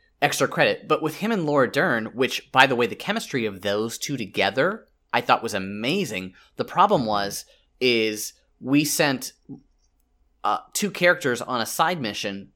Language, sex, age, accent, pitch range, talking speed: English, male, 30-49, American, 105-135 Hz, 165 wpm